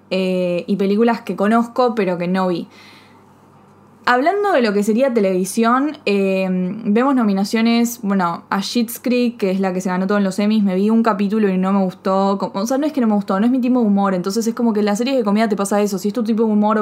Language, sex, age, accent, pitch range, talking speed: Spanish, female, 20-39, Argentinian, 190-225 Hz, 255 wpm